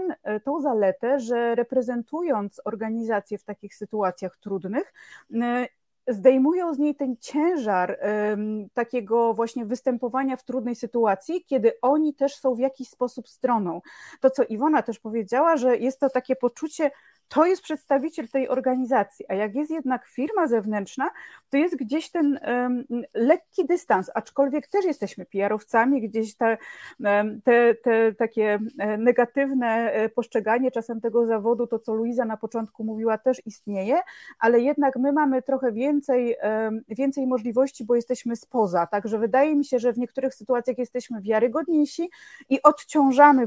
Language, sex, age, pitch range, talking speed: Polish, female, 30-49, 215-270 Hz, 135 wpm